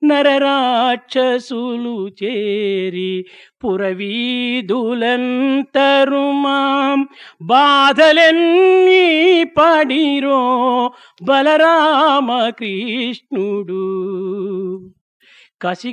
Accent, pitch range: Indian, 240-330 Hz